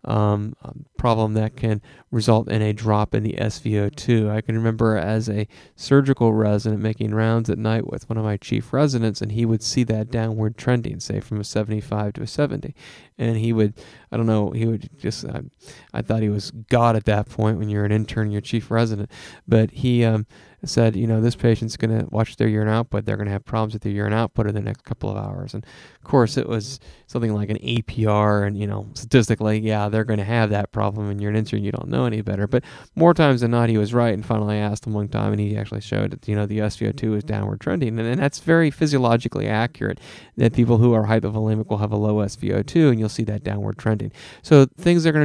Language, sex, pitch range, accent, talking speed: English, male, 105-125 Hz, American, 235 wpm